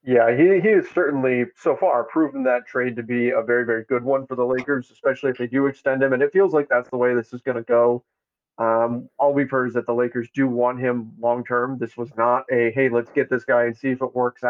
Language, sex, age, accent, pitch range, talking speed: English, male, 30-49, American, 120-140 Hz, 265 wpm